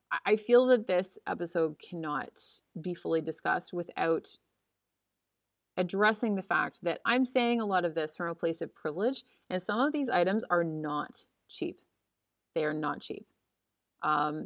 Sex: female